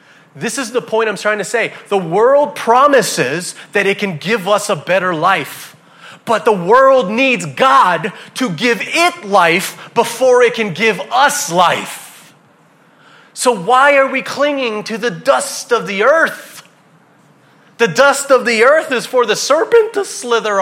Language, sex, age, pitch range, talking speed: English, male, 30-49, 185-260 Hz, 165 wpm